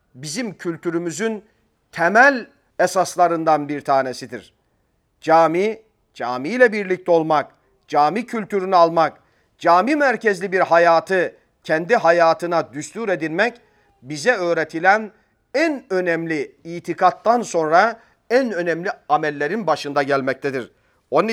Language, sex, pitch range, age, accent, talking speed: Turkish, male, 155-205 Hz, 40-59, native, 95 wpm